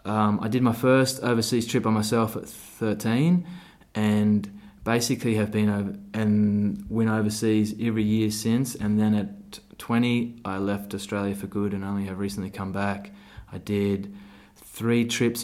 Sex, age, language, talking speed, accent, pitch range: male, 20-39, English, 160 wpm, Australian, 100-115 Hz